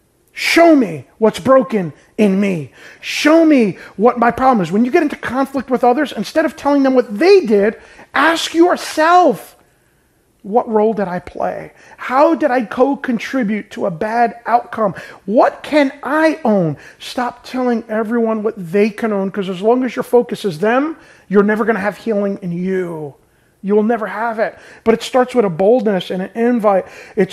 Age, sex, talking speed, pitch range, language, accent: 30-49, male, 180 wpm, 200-255 Hz, English, American